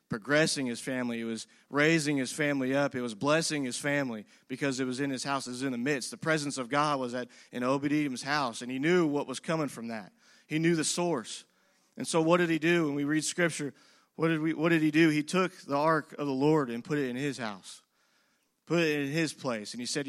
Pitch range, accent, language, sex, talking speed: 135-170 Hz, American, English, male, 250 wpm